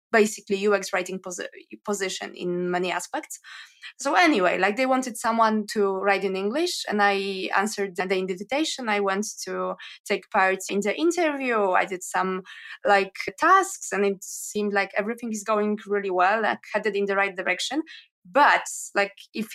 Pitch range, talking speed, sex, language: 200-260 Hz, 165 wpm, female, English